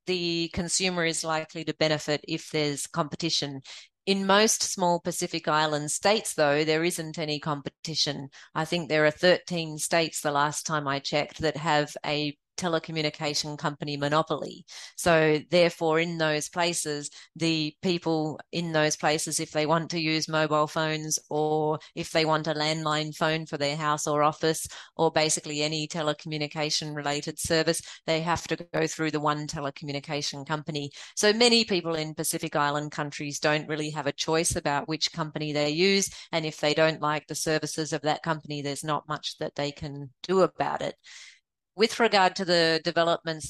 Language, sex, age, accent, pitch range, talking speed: English, female, 30-49, Australian, 150-165 Hz, 170 wpm